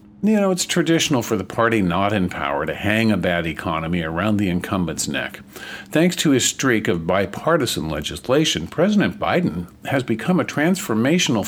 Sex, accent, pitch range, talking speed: male, American, 100-135 Hz, 165 wpm